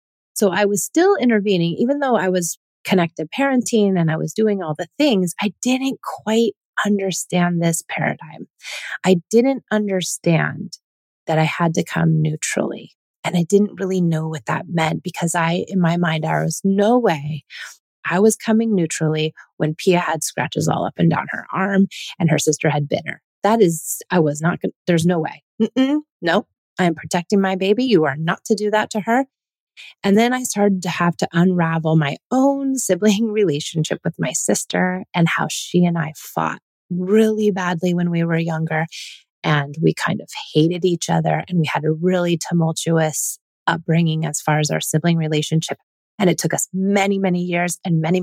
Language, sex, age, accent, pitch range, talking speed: English, female, 30-49, American, 160-205 Hz, 185 wpm